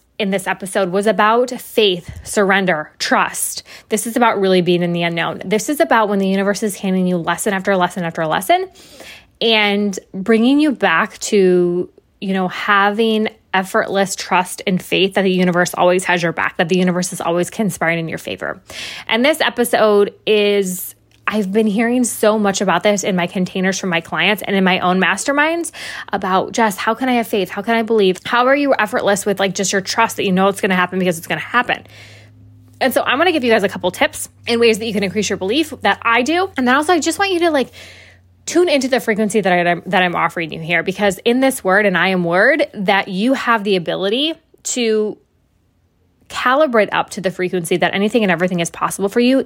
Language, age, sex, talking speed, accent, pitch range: English, 20-39, female, 220 wpm, American, 180-225 Hz